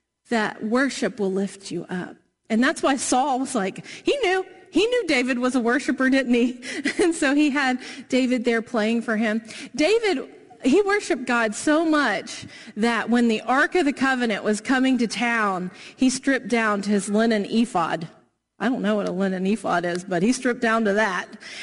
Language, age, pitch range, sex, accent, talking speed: English, 40-59, 225-295 Hz, female, American, 190 wpm